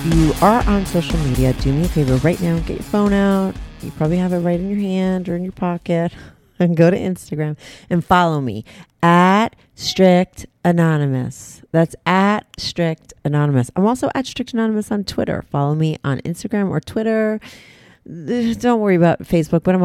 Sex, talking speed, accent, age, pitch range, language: female, 180 wpm, American, 30-49, 145-190 Hz, English